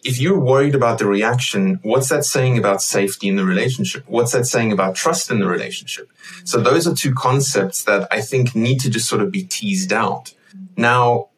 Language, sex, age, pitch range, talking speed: English, male, 20-39, 105-130 Hz, 205 wpm